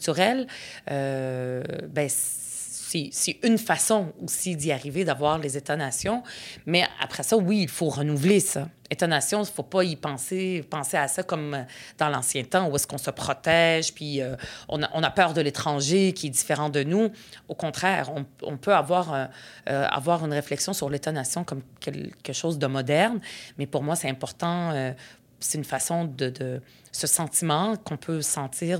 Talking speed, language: 180 wpm, French